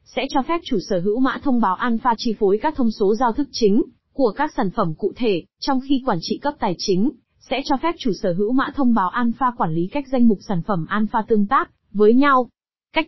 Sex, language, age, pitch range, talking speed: female, Vietnamese, 20-39, 210-255 Hz, 250 wpm